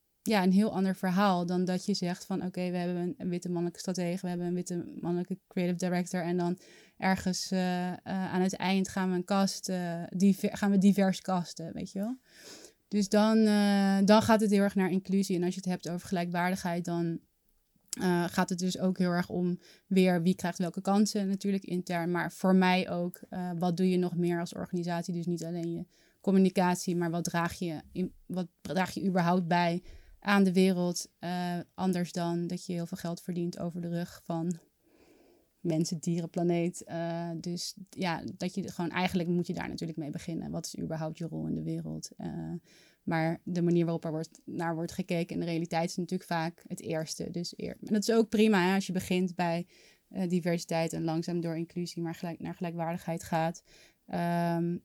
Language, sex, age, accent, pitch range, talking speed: Dutch, female, 20-39, Dutch, 170-190 Hz, 205 wpm